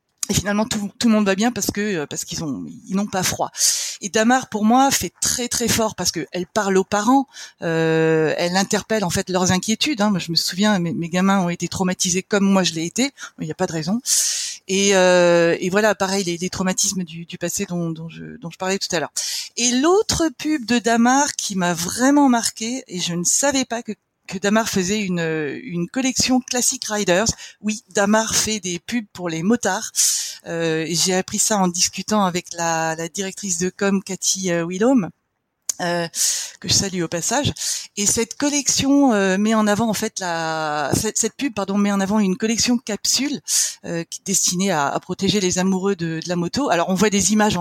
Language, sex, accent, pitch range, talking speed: French, female, French, 180-220 Hz, 210 wpm